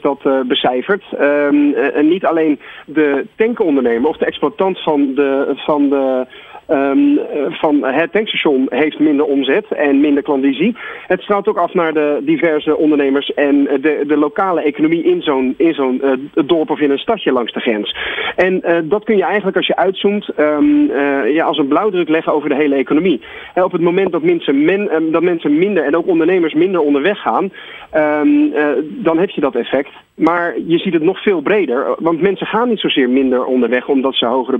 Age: 40-59